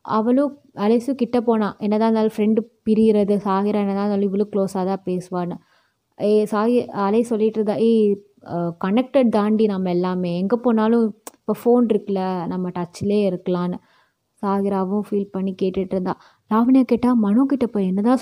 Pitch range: 190-235 Hz